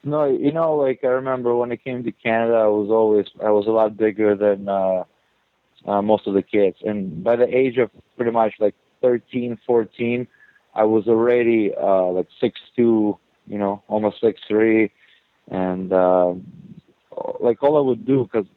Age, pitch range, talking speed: 20-39, 95-115 Hz, 175 wpm